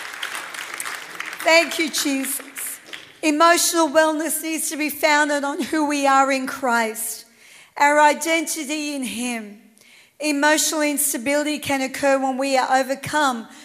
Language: English